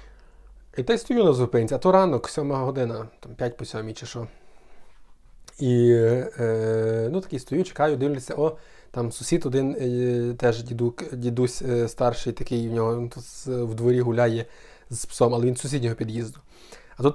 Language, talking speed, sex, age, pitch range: Ukrainian, 170 wpm, male, 20-39, 115-150 Hz